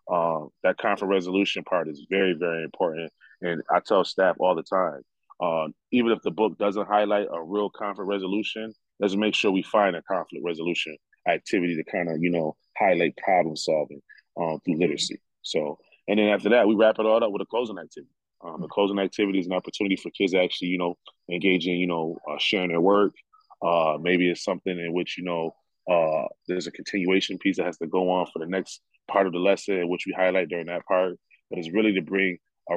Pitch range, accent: 90-105 Hz, American